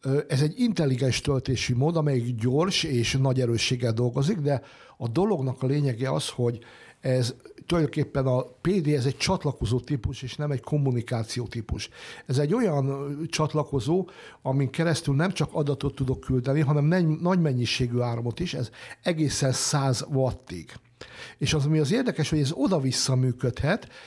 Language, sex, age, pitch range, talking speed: Hungarian, male, 60-79, 125-155 Hz, 150 wpm